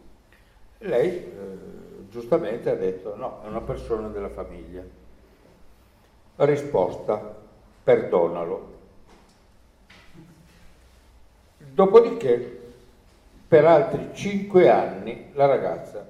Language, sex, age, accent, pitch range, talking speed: Italian, male, 60-79, native, 105-140 Hz, 75 wpm